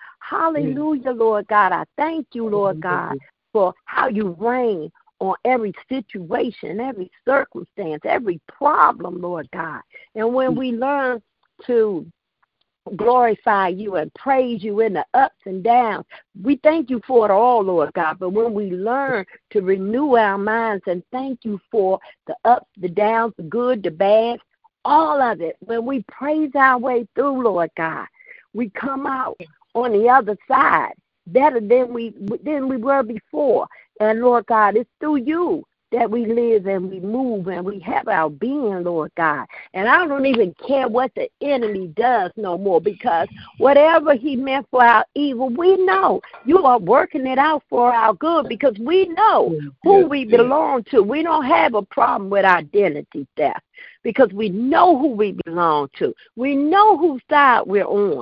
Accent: American